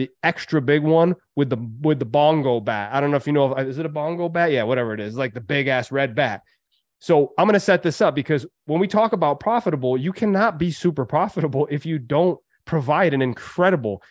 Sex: male